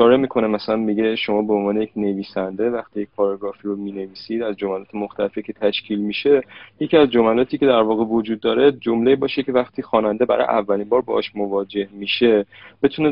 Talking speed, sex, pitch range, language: 190 wpm, male, 105-125 Hz, Persian